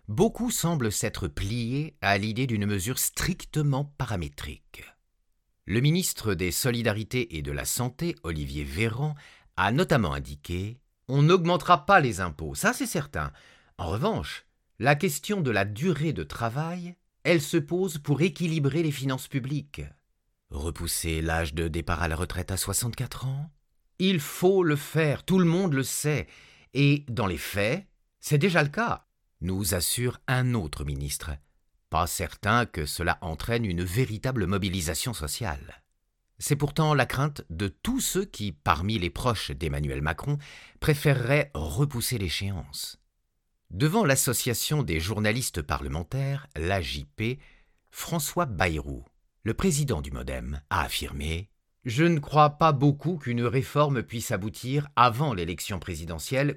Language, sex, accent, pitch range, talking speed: French, male, French, 85-145 Hz, 140 wpm